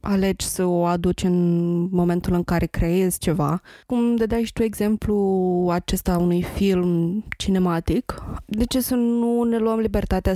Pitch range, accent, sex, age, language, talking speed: 165-195 Hz, native, female, 20-39, Romanian, 155 wpm